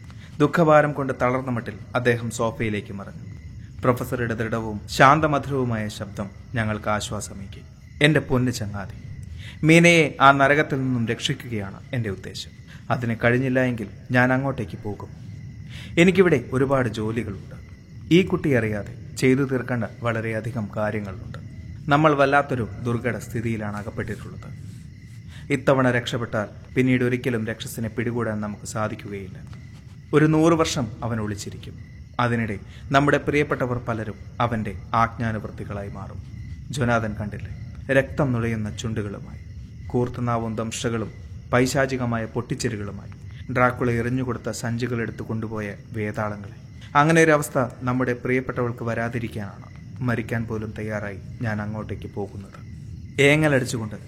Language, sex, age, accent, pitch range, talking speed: Malayalam, male, 30-49, native, 105-130 Hz, 100 wpm